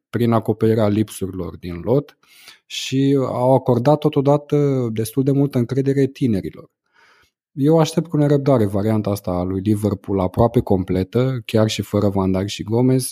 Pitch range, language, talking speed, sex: 105-130 Hz, Romanian, 145 wpm, male